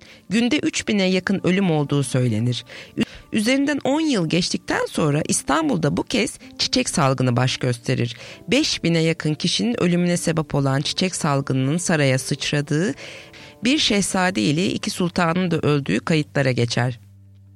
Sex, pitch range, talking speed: female, 140-220 Hz, 125 wpm